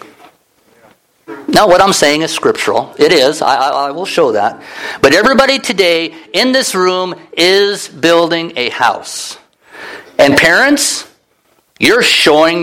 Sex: male